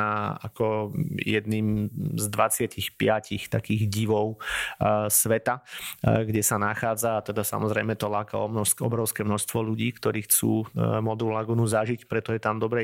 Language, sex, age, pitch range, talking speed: Slovak, male, 30-49, 110-120 Hz, 125 wpm